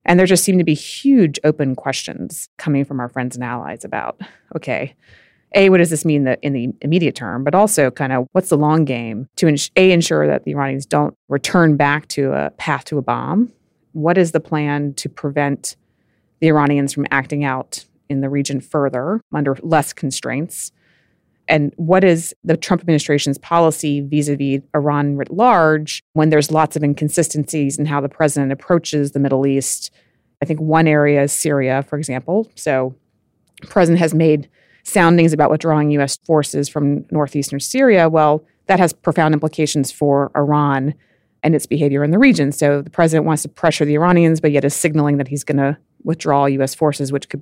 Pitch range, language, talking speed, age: 140-160 Hz, English, 185 wpm, 30-49